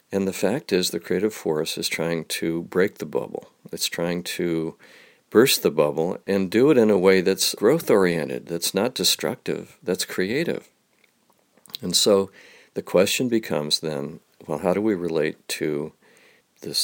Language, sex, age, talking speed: English, male, 50-69, 160 wpm